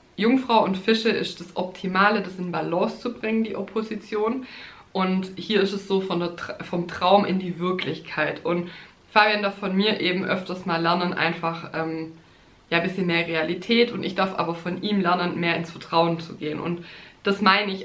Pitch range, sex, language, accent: 170-205 Hz, female, German, German